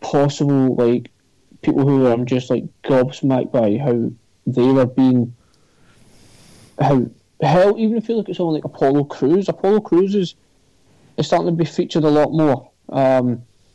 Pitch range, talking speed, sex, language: 125-155 Hz, 155 wpm, male, English